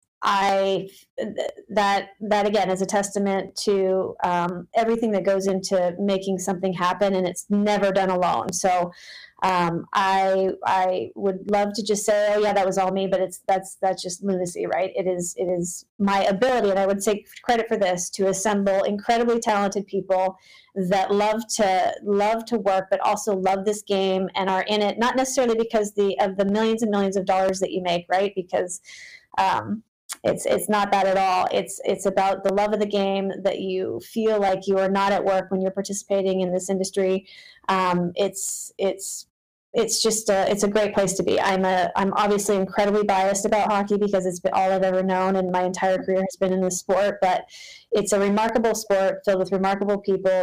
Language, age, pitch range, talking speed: English, 30-49, 190-205 Hz, 200 wpm